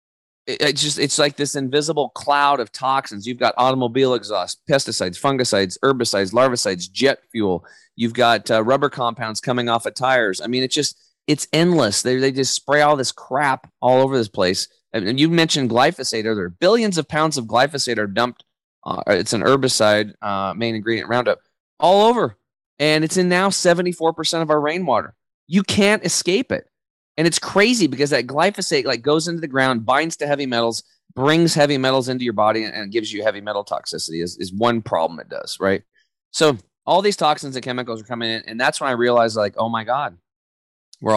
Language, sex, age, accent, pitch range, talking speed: English, male, 30-49, American, 110-150 Hz, 195 wpm